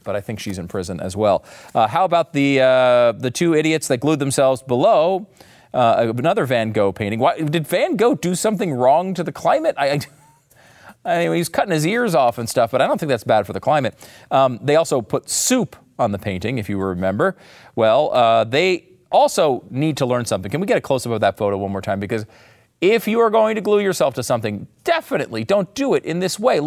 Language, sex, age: English, male, 40-59